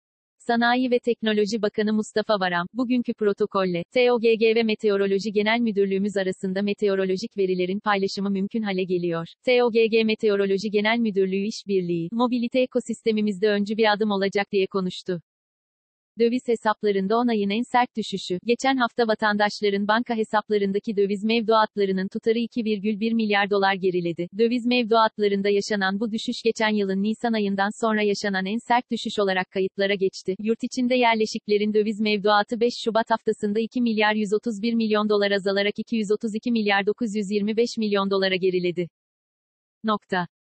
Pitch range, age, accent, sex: 200-230 Hz, 40-59, native, female